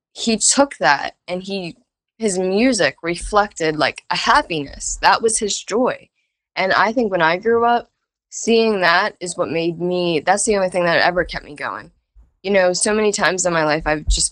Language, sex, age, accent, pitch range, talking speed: English, female, 10-29, American, 160-215 Hz, 195 wpm